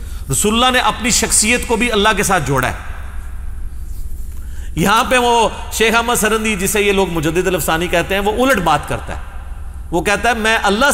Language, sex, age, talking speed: Urdu, male, 40-59, 190 wpm